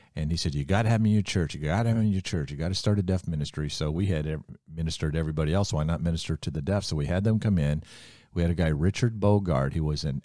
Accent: American